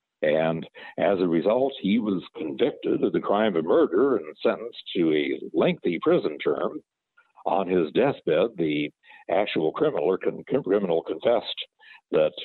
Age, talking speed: 60-79, 135 wpm